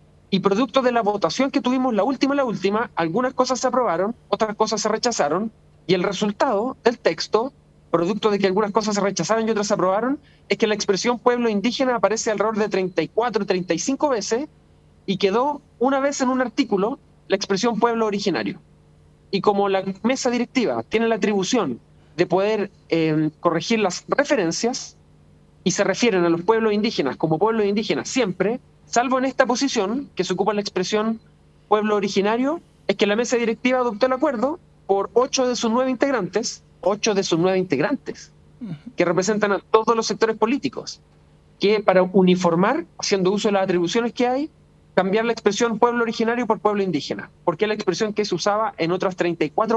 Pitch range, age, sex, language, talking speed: 185-235 Hz, 30-49, male, Spanish, 180 wpm